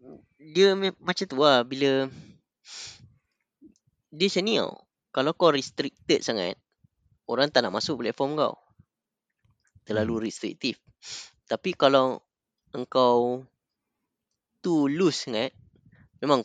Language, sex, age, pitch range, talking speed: Malay, female, 20-39, 120-155 Hz, 100 wpm